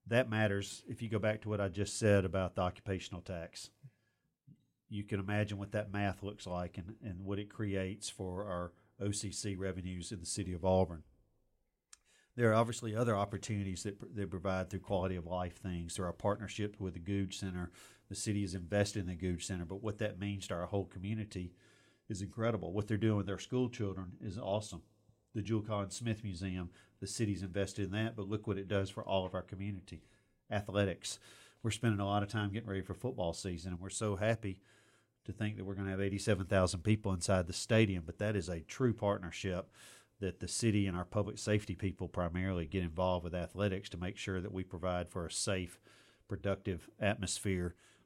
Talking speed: 200 wpm